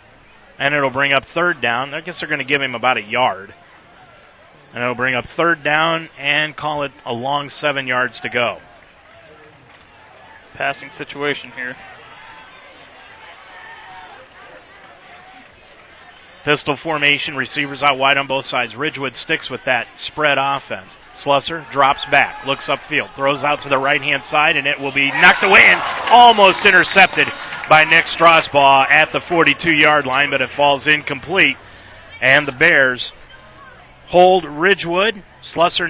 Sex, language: male, English